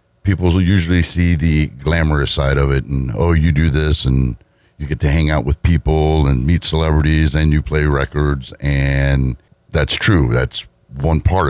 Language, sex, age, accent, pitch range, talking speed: English, male, 60-79, American, 70-80 Hz, 185 wpm